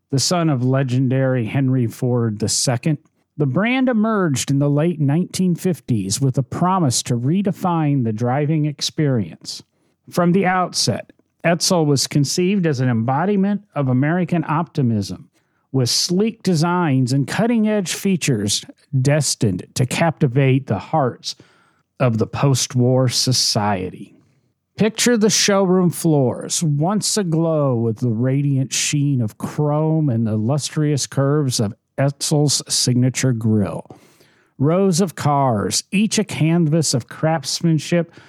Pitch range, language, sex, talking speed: 125-165 Hz, English, male, 120 wpm